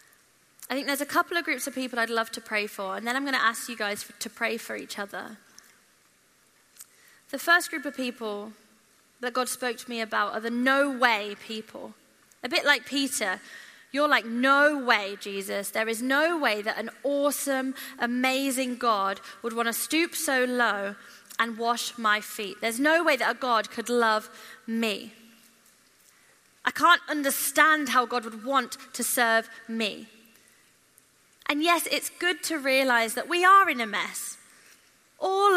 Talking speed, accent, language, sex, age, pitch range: 175 wpm, British, English, female, 20-39, 225-275 Hz